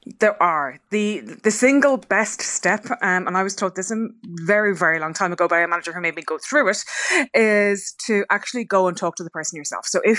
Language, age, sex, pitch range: English, 20-39, female, 175-215 Hz